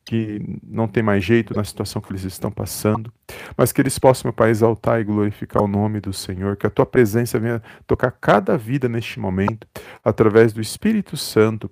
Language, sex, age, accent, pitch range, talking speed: Portuguese, male, 40-59, Brazilian, 105-120 Hz, 195 wpm